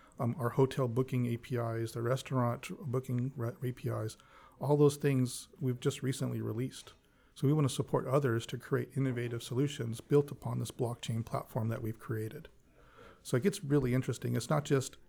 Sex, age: male, 40-59